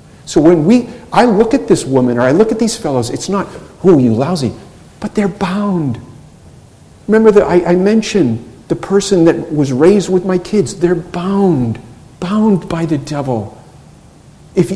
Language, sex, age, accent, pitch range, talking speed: English, male, 50-69, American, 125-190 Hz, 170 wpm